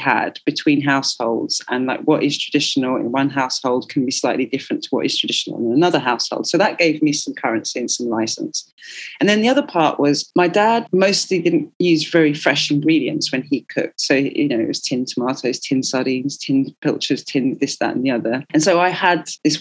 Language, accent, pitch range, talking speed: English, British, 140-170 Hz, 215 wpm